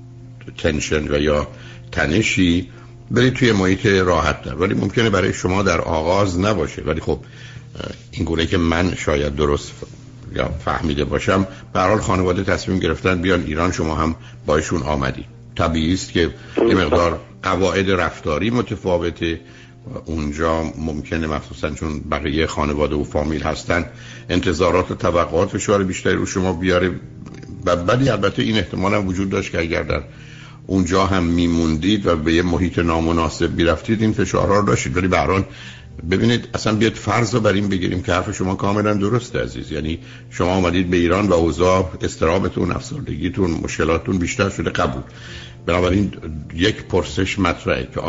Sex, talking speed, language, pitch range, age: male, 140 wpm, Persian, 80-105 Hz, 60-79